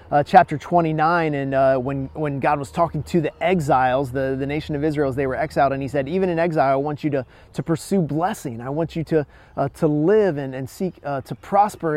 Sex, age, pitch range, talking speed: male, 30-49, 135-170 Hz, 240 wpm